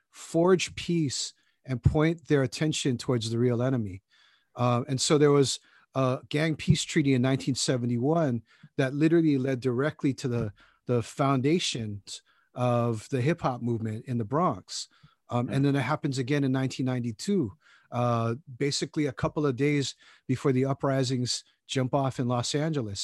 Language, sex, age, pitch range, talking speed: English, male, 40-59, 120-150 Hz, 155 wpm